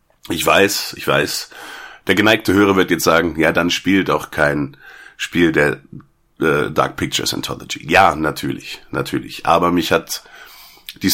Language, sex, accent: German, male, German